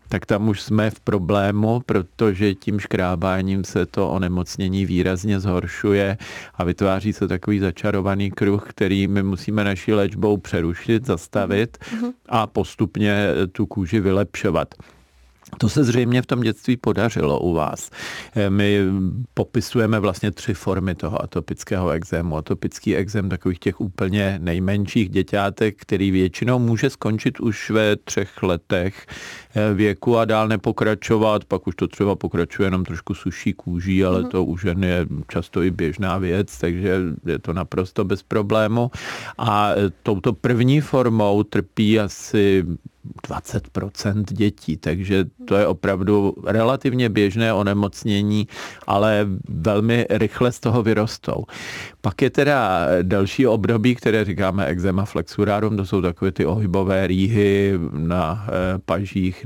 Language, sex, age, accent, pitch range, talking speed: Czech, male, 40-59, native, 95-110 Hz, 130 wpm